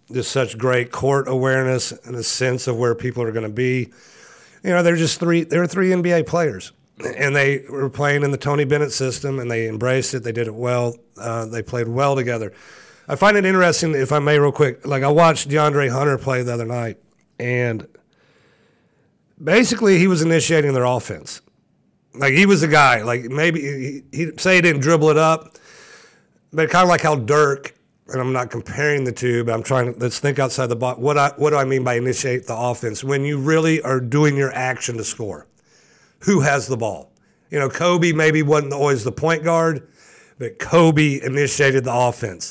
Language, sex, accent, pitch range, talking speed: English, male, American, 125-150 Hz, 210 wpm